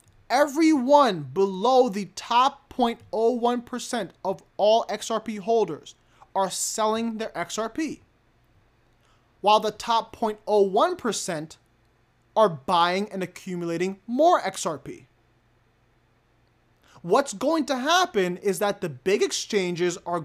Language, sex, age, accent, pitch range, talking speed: English, male, 20-39, American, 165-230 Hz, 100 wpm